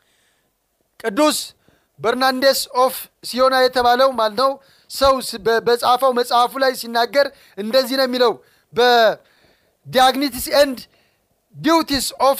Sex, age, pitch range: male, 30-49, 245-335 Hz